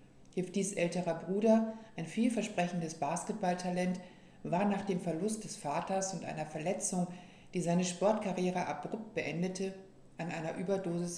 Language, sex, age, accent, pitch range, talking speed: German, female, 60-79, German, 160-190 Hz, 125 wpm